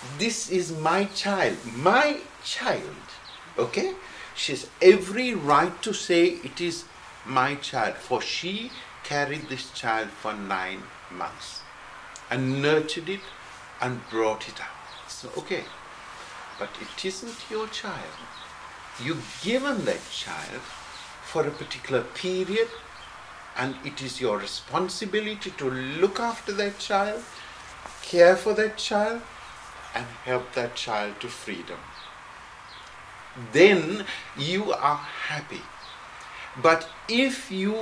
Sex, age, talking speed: male, 60-79, 115 wpm